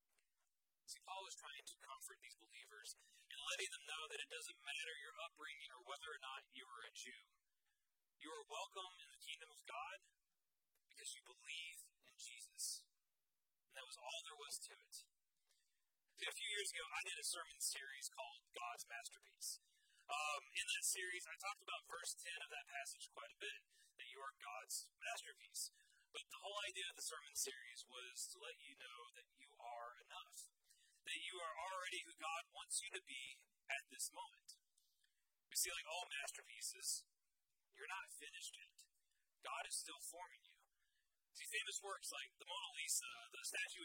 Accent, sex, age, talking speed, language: American, male, 30-49, 180 wpm, English